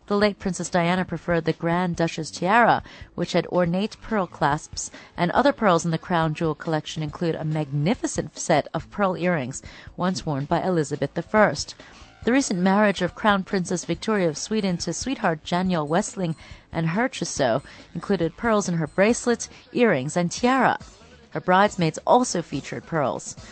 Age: 30-49